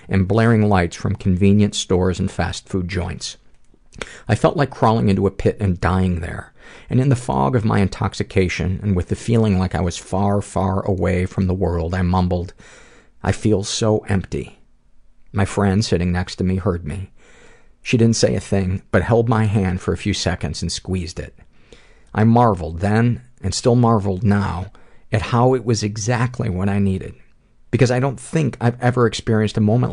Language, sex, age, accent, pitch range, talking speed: English, male, 50-69, American, 95-115 Hz, 190 wpm